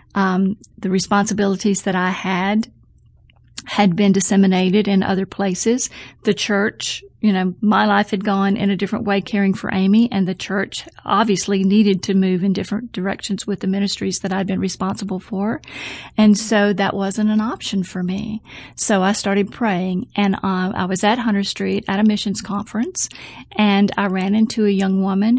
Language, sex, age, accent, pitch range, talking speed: English, female, 40-59, American, 195-225 Hz, 175 wpm